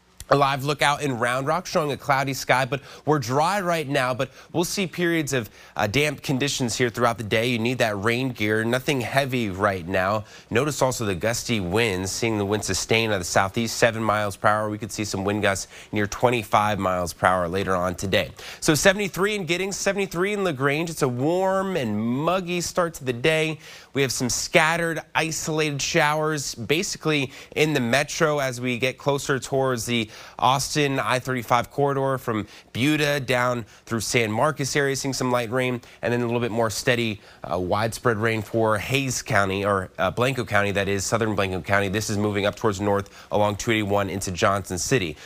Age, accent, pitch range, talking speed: 30-49, American, 105-140 Hz, 190 wpm